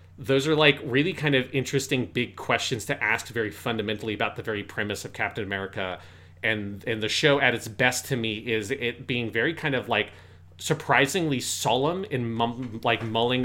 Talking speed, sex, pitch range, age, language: 185 wpm, male, 110-130 Hz, 30-49, English